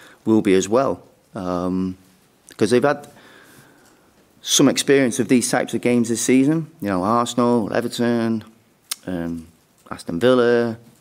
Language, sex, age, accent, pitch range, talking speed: English, male, 30-49, British, 95-115 Hz, 130 wpm